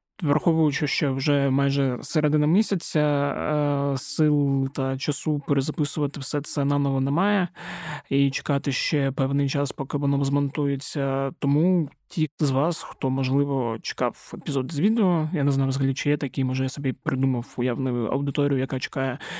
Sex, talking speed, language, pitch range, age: male, 145 wpm, Ukrainian, 135-150 Hz, 20-39